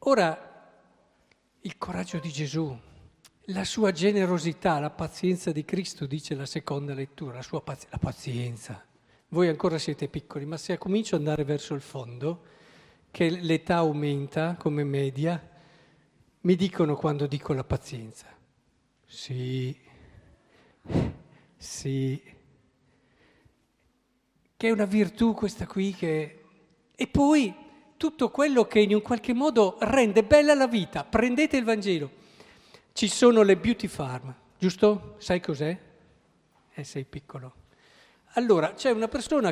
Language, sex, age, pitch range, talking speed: Italian, male, 50-69, 145-205 Hz, 125 wpm